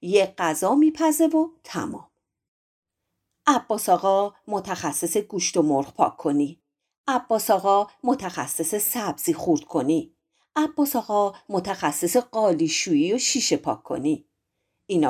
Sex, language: female, Persian